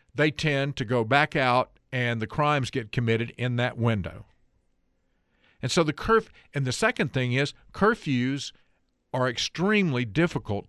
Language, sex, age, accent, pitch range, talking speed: English, male, 50-69, American, 120-150 Hz, 150 wpm